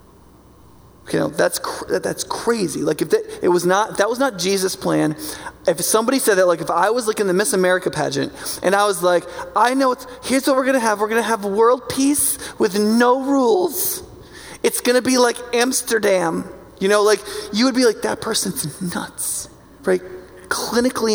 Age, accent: 20-39, American